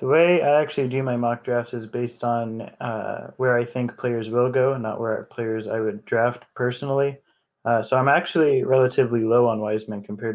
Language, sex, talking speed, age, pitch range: English, male, 205 wpm, 20-39, 110-125 Hz